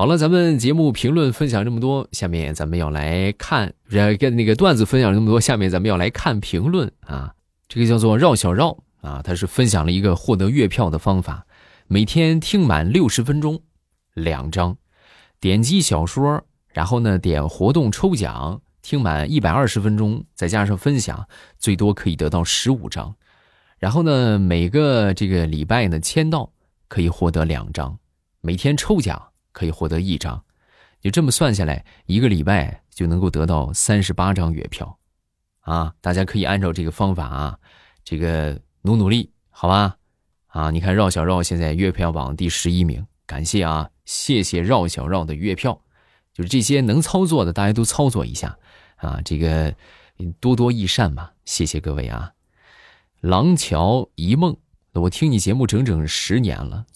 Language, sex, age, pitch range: Chinese, male, 20-39, 80-120 Hz